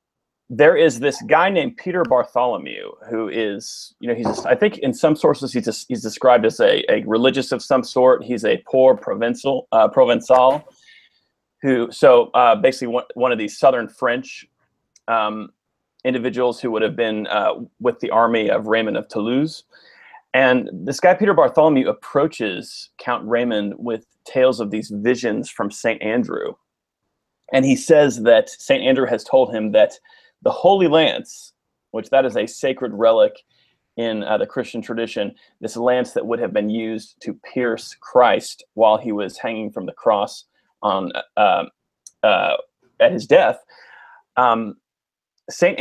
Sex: male